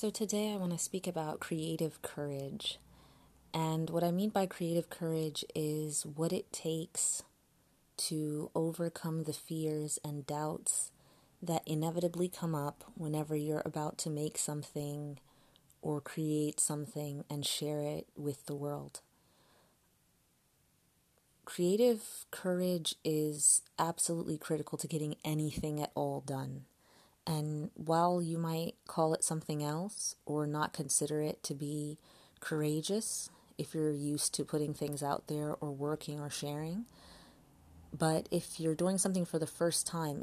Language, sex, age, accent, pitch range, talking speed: English, female, 30-49, American, 150-165 Hz, 135 wpm